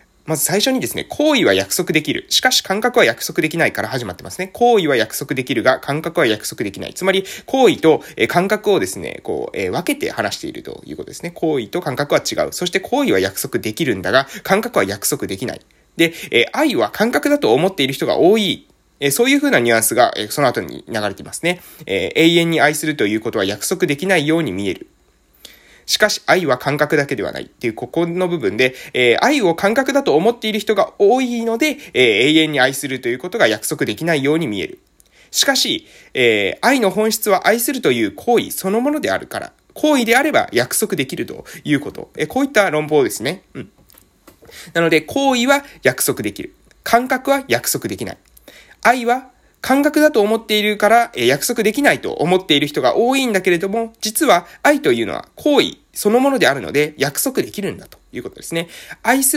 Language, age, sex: Japanese, 20-39, male